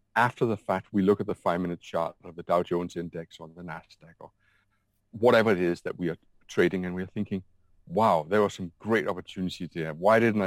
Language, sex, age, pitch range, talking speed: English, male, 30-49, 85-105 Hz, 220 wpm